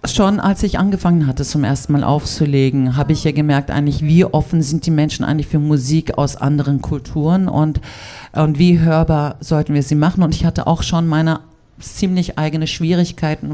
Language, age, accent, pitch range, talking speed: German, 50-69, German, 135-165 Hz, 185 wpm